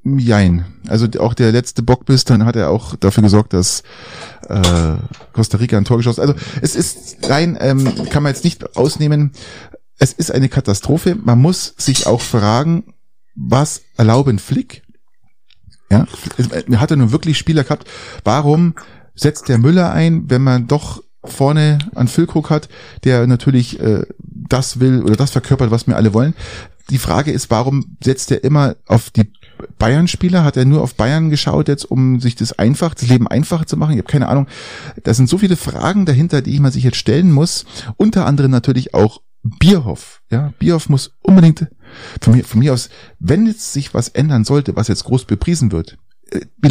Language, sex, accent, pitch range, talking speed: German, male, German, 115-150 Hz, 180 wpm